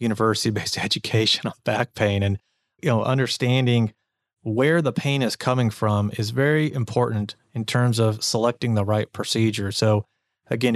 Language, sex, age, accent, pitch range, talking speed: English, male, 30-49, American, 105-120 Hz, 150 wpm